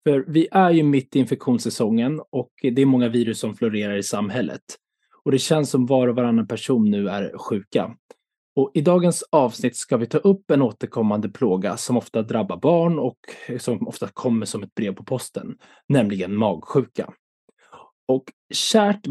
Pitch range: 115-160 Hz